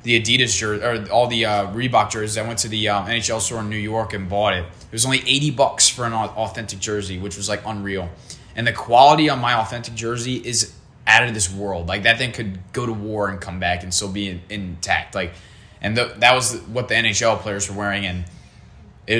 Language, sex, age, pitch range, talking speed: English, male, 20-39, 95-120 Hz, 235 wpm